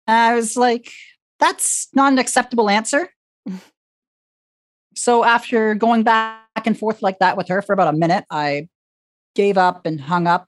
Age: 40-59